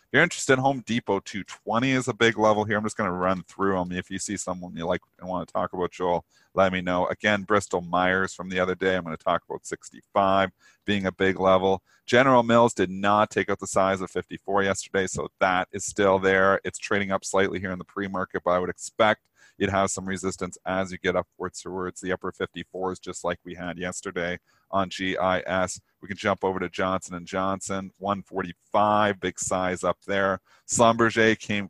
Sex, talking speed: male, 210 wpm